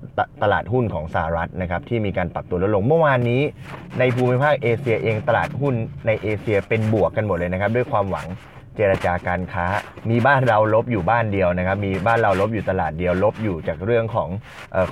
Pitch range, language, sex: 90-115 Hz, Thai, male